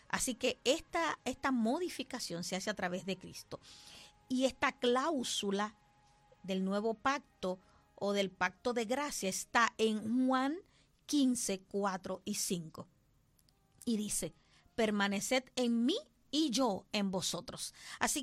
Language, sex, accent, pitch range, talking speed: English, female, American, 195-260 Hz, 130 wpm